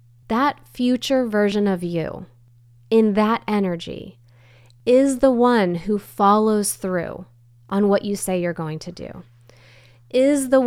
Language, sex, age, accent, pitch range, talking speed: English, female, 20-39, American, 160-220 Hz, 135 wpm